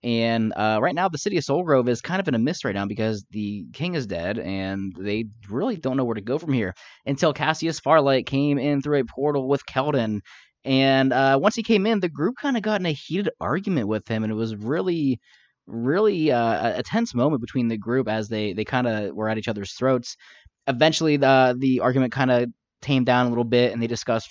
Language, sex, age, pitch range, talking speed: English, male, 20-39, 105-135 Hz, 230 wpm